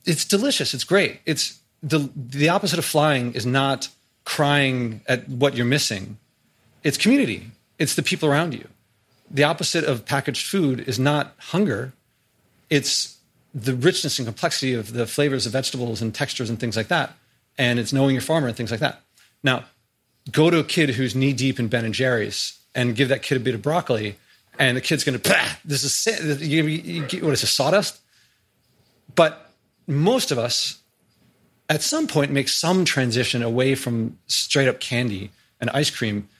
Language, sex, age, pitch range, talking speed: English, male, 30-49, 120-150 Hz, 180 wpm